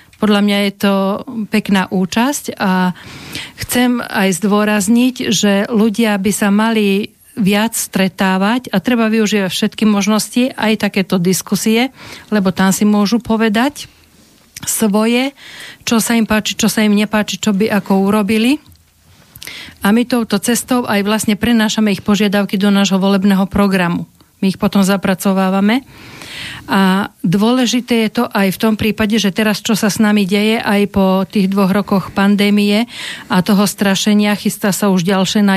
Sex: female